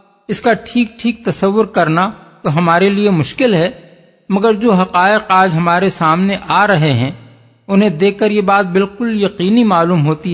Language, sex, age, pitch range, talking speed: Urdu, male, 50-69, 165-200 Hz, 170 wpm